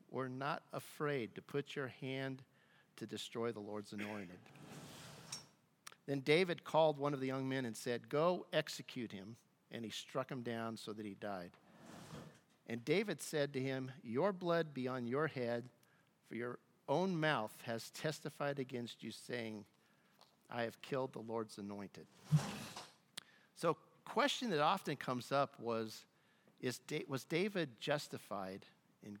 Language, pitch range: English, 120-165 Hz